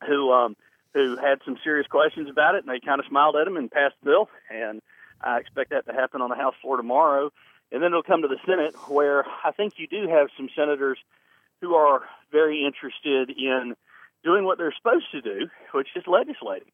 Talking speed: 215 wpm